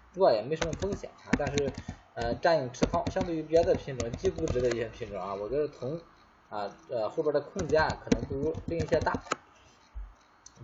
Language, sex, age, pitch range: Chinese, male, 20-39, 120-160 Hz